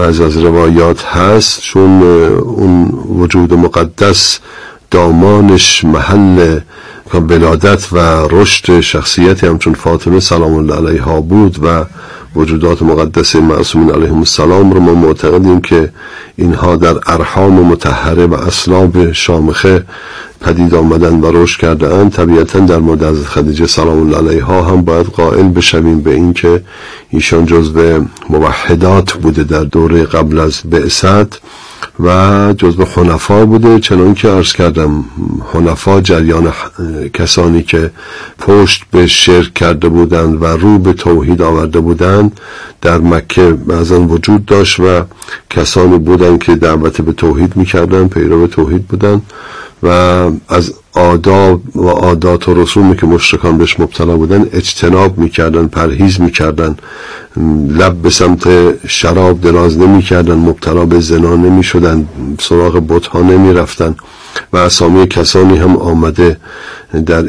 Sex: male